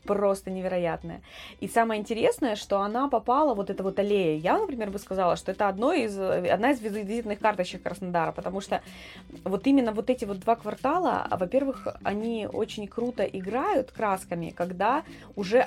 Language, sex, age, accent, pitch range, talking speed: Russian, female, 20-39, native, 180-225 Hz, 160 wpm